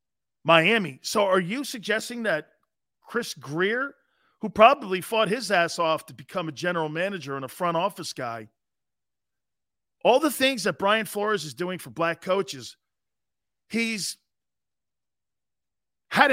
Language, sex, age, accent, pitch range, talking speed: English, male, 40-59, American, 140-220 Hz, 135 wpm